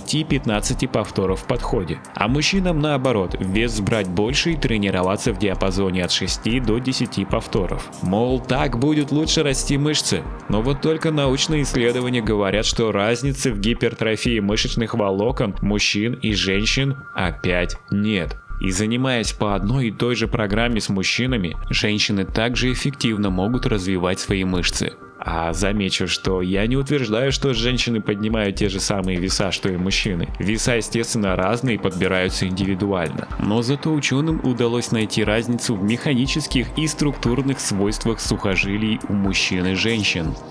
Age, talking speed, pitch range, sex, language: 20-39, 145 wpm, 100-130 Hz, male, Russian